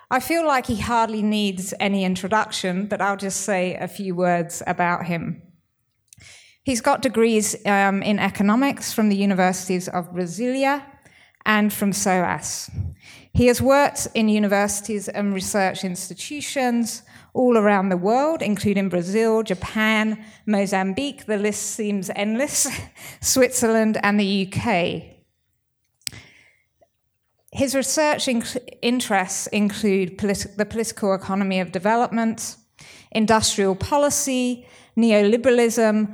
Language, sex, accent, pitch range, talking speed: English, female, British, 195-235 Hz, 115 wpm